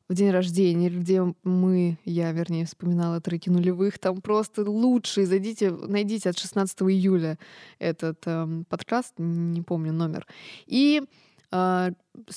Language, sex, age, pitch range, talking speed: Russian, female, 20-39, 175-215 Hz, 125 wpm